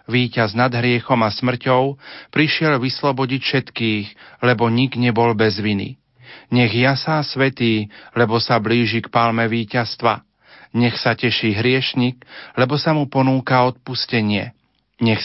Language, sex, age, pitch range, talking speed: Slovak, male, 40-59, 110-130 Hz, 125 wpm